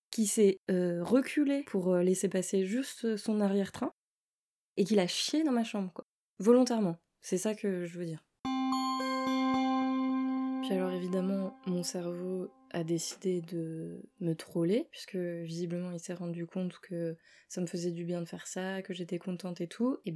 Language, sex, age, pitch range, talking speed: French, female, 20-39, 175-220 Hz, 165 wpm